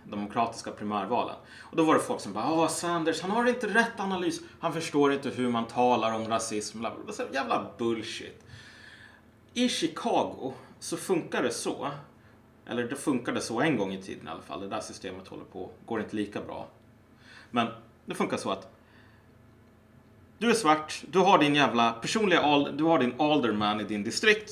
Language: Swedish